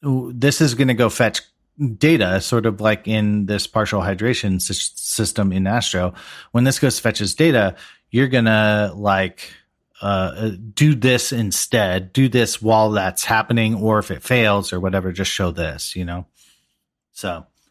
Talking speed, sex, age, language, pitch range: 165 wpm, male, 40-59, English, 105-150 Hz